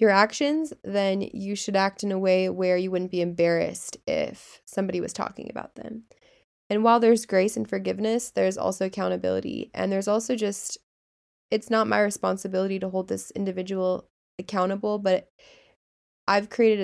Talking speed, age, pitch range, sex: 160 wpm, 20-39, 185-220 Hz, female